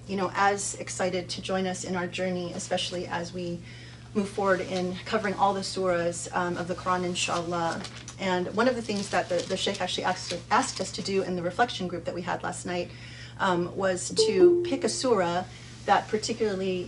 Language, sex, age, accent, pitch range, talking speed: English, female, 30-49, American, 175-195 Hz, 205 wpm